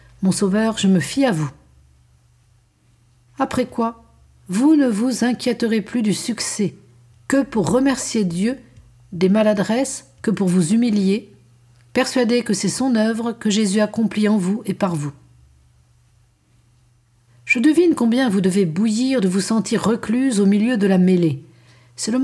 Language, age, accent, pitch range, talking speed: French, 50-69, French, 155-240 Hz, 150 wpm